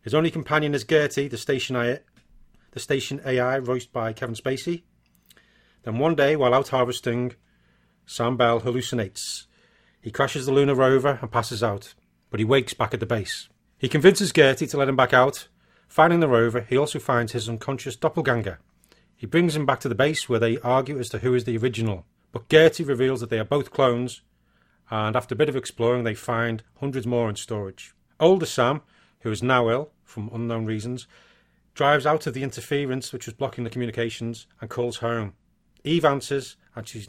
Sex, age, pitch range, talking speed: male, 30-49, 115-140 Hz, 190 wpm